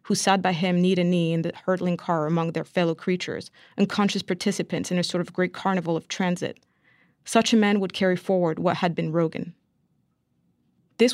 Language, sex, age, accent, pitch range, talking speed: English, female, 30-49, American, 175-205 Hz, 185 wpm